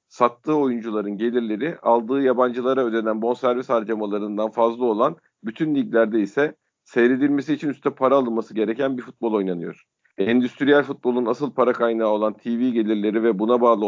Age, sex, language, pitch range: 50-69, male, Turkish, 115-135 Hz